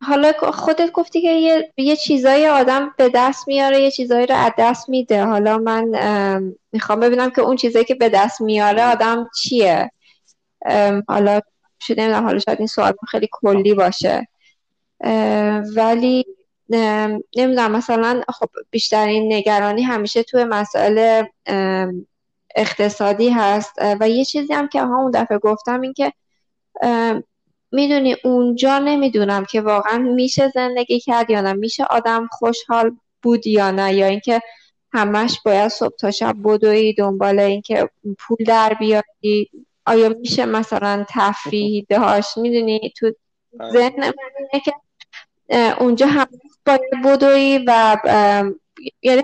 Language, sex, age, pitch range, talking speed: Persian, female, 10-29, 210-255 Hz, 135 wpm